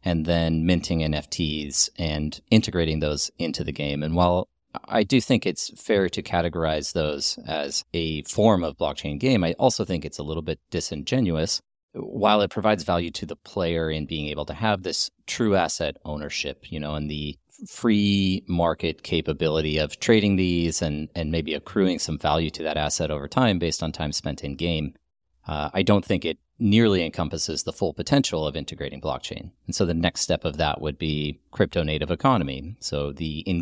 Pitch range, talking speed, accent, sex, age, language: 75-90 Hz, 185 wpm, American, male, 30-49, English